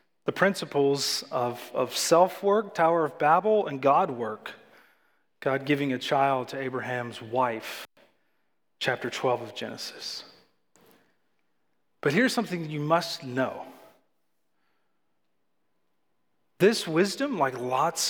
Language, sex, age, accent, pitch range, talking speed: English, male, 40-59, American, 150-225 Hz, 105 wpm